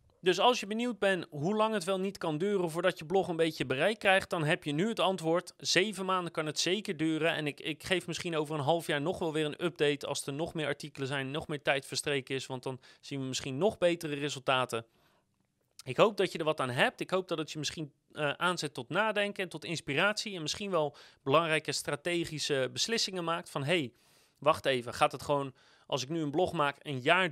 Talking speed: 235 wpm